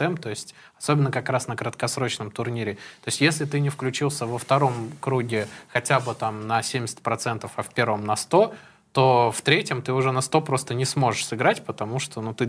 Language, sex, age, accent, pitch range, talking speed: Russian, male, 20-39, native, 110-130 Hz, 200 wpm